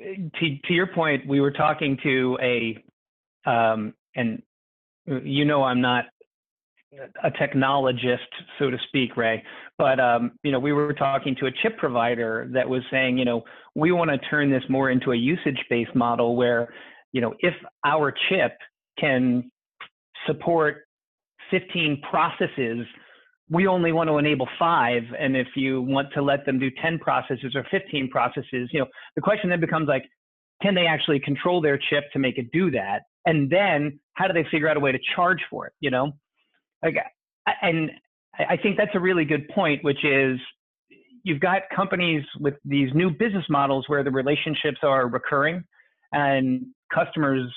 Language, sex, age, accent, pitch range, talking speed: English, male, 50-69, American, 130-165 Hz, 170 wpm